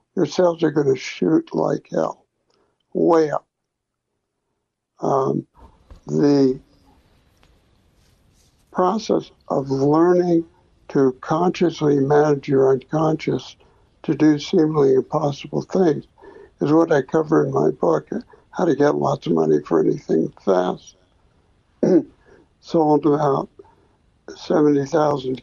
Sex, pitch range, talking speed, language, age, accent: male, 140-170 Hz, 105 wpm, English, 60-79, American